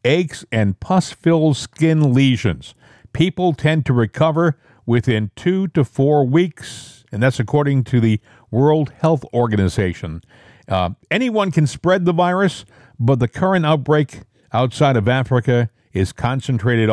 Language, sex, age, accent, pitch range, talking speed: English, male, 50-69, American, 115-160 Hz, 130 wpm